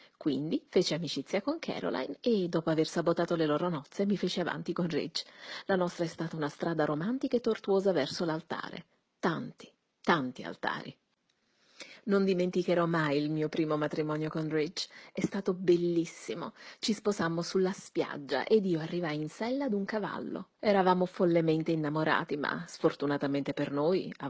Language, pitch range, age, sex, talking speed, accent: Italian, 160-225 Hz, 40-59, female, 155 wpm, native